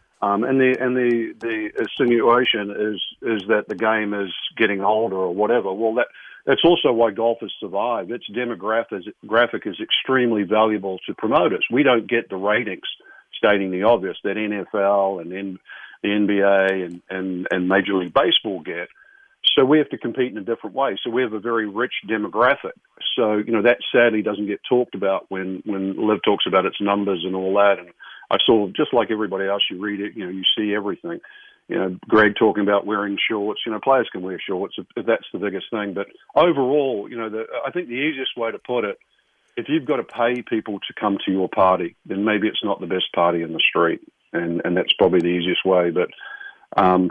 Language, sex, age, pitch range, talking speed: English, male, 50-69, 100-125 Hz, 210 wpm